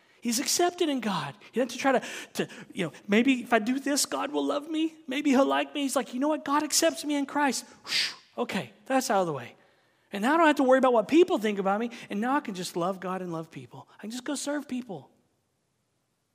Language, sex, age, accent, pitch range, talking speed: English, male, 40-59, American, 165-235 Hz, 260 wpm